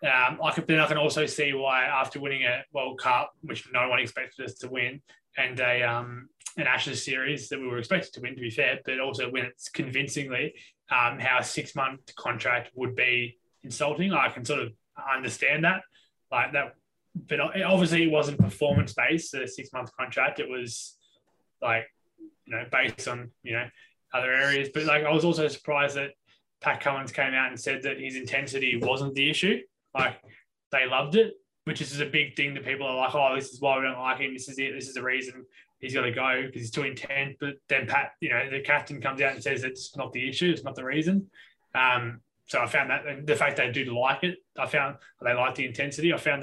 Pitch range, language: 130-150 Hz, English